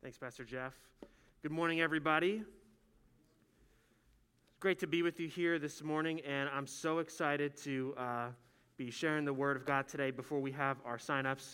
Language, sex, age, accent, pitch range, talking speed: English, male, 20-39, American, 140-175 Hz, 170 wpm